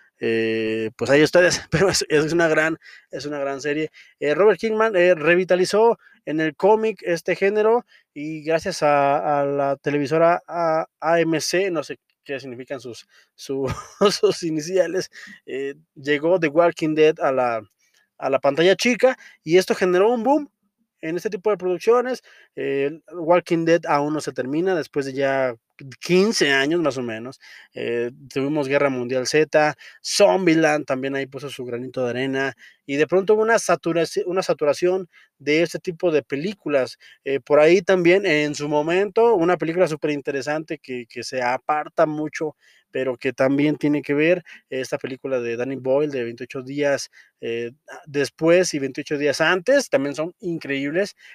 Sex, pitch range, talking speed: male, 135-180 Hz, 160 wpm